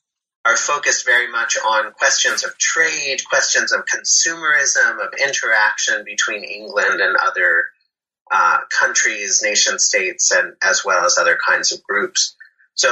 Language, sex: English, male